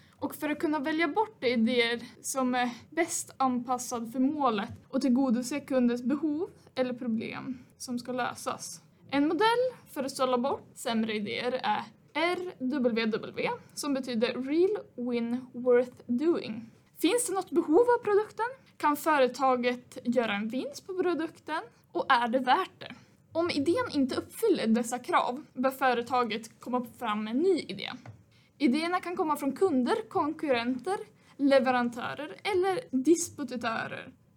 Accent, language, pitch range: native, Swedish, 245-335 Hz